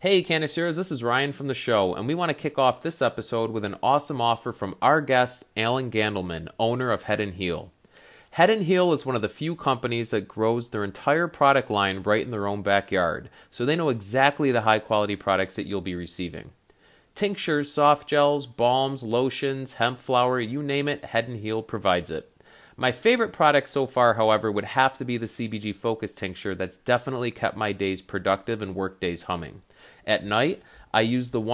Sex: male